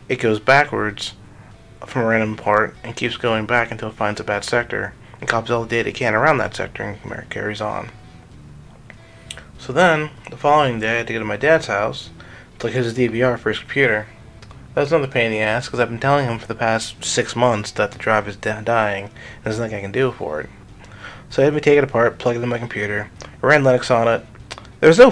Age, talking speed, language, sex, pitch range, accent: 20-39, 235 wpm, English, male, 110-130 Hz, American